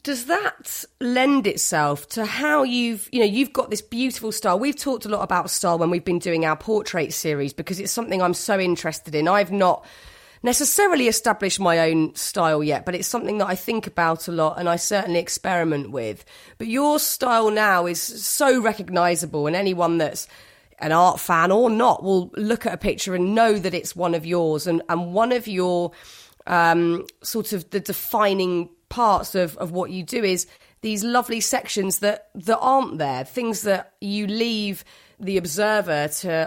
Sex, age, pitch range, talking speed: female, 30-49, 170-220 Hz, 190 wpm